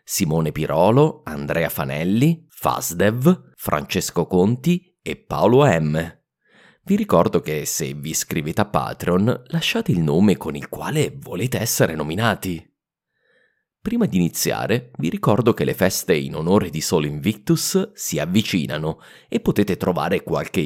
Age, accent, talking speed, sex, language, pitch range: 30-49, Italian, 135 wpm, male, English, 80-125 Hz